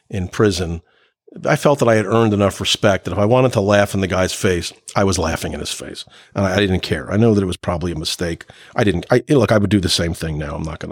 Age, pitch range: 50-69, 95-130 Hz